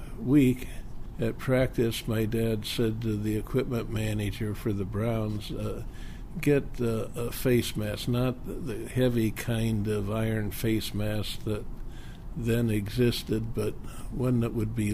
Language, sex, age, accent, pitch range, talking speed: English, male, 60-79, American, 105-125 Hz, 140 wpm